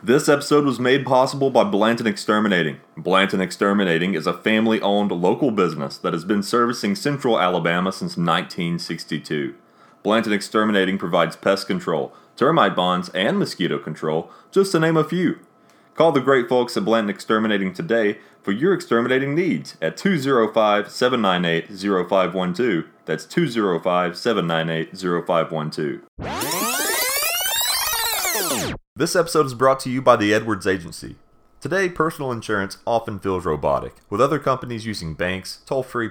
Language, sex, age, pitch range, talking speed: English, male, 30-49, 95-125 Hz, 125 wpm